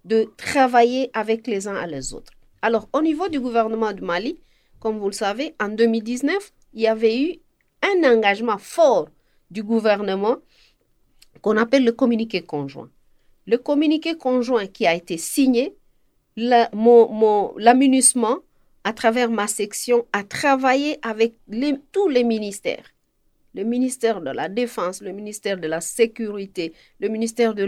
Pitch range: 205-260 Hz